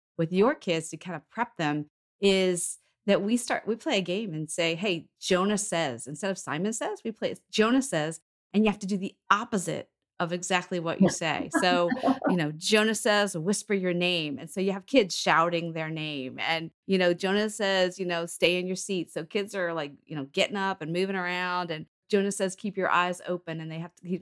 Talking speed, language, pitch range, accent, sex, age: 225 wpm, English, 160-200 Hz, American, female, 30-49